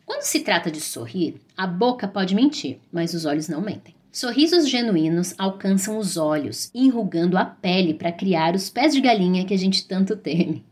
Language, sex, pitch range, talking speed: Portuguese, female, 180-250 Hz, 185 wpm